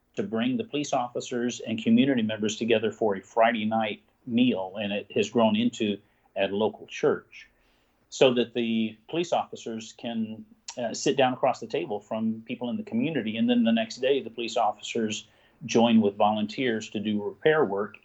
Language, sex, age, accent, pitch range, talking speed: English, male, 50-69, American, 110-145 Hz, 185 wpm